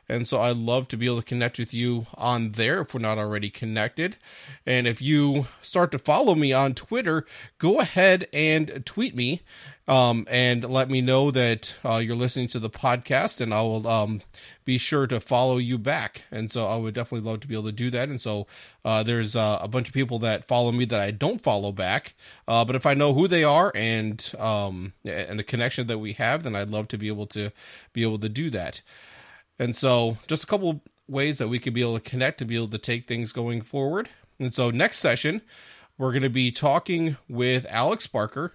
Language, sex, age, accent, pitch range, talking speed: English, male, 30-49, American, 115-135 Hz, 225 wpm